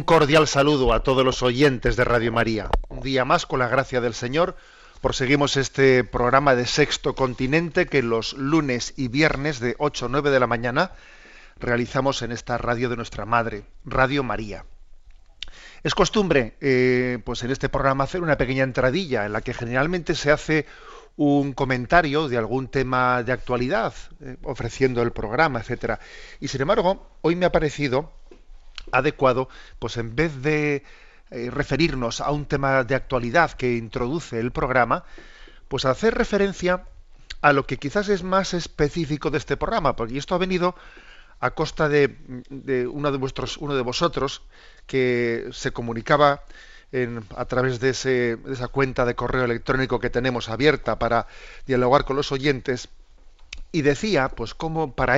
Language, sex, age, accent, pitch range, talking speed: Spanish, male, 40-59, Spanish, 120-145 Hz, 165 wpm